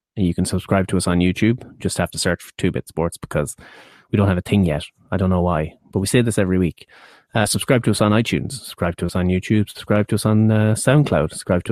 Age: 30-49